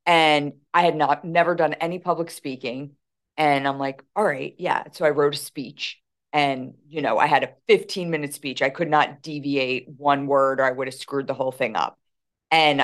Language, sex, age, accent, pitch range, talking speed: English, female, 30-49, American, 140-175 Hz, 210 wpm